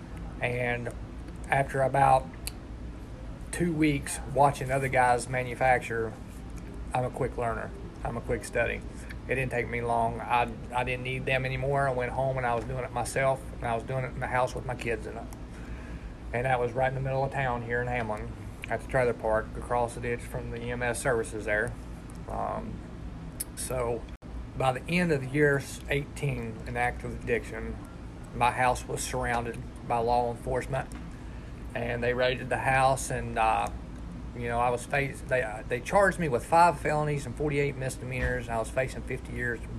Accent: American